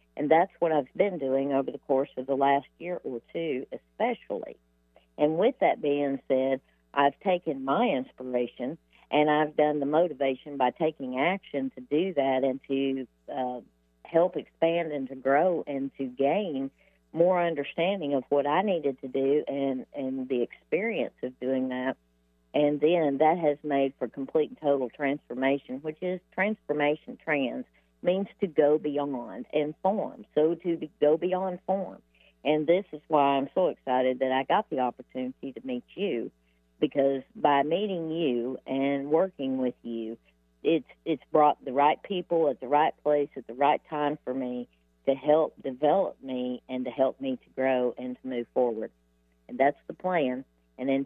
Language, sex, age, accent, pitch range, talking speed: English, female, 50-69, American, 130-155 Hz, 175 wpm